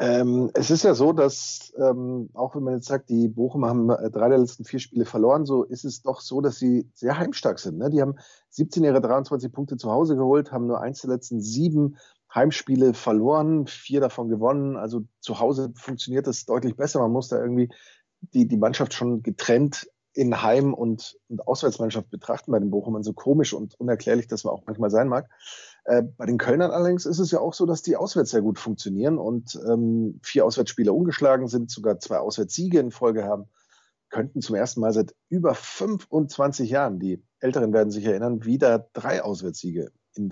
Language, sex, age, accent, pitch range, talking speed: German, male, 30-49, German, 115-140 Hz, 195 wpm